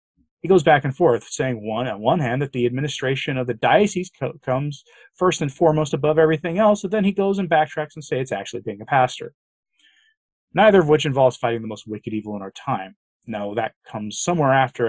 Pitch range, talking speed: 125-185 Hz, 215 wpm